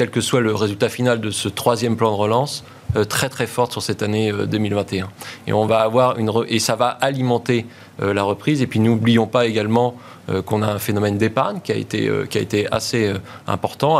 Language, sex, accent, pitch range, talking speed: French, male, French, 110-130 Hz, 205 wpm